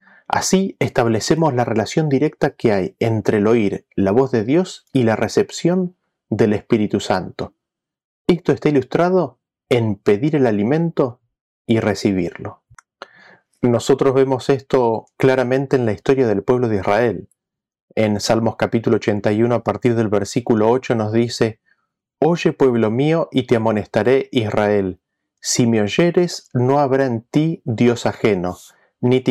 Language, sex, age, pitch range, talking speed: Spanish, male, 30-49, 110-140 Hz, 140 wpm